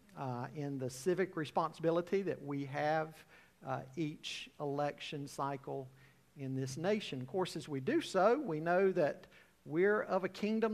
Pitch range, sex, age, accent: 140-210 Hz, male, 50-69, American